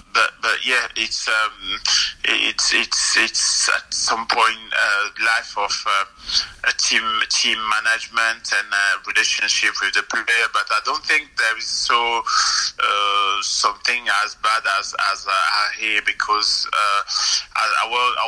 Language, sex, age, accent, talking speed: English, male, 30-49, French, 140 wpm